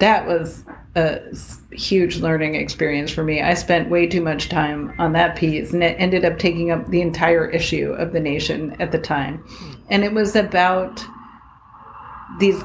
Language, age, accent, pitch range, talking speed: English, 40-59, American, 160-195 Hz, 175 wpm